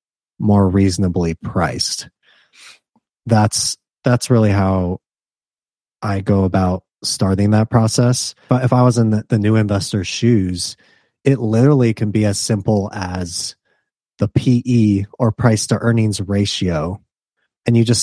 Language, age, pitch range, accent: English, 30-49, 100-120 Hz, American